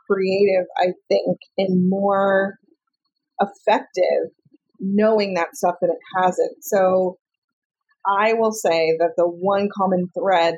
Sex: female